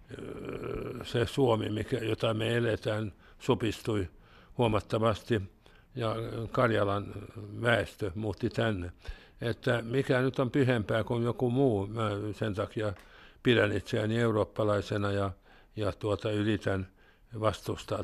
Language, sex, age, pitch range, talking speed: Finnish, male, 60-79, 100-120 Hz, 105 wpm